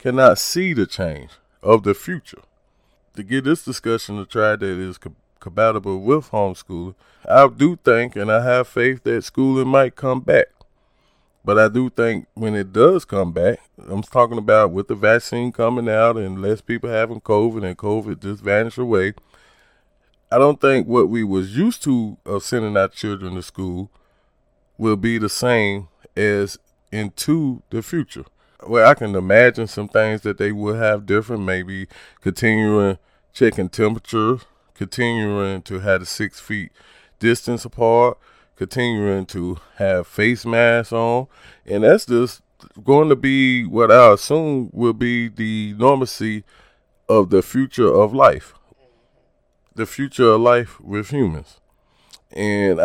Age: 30-49